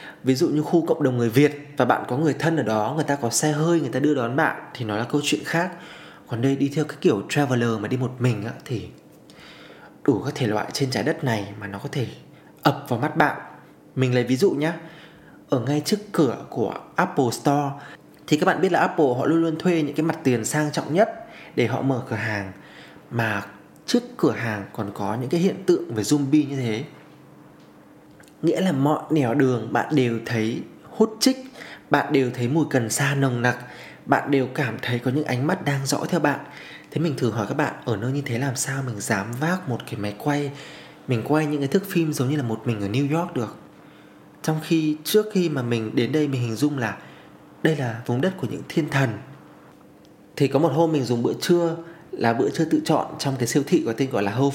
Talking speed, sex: 235 wpm, male